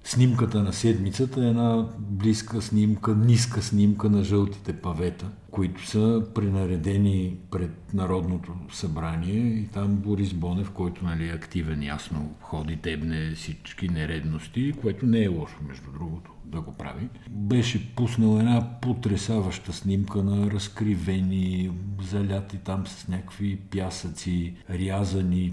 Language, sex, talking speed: Bulgarian, male, 125 wpm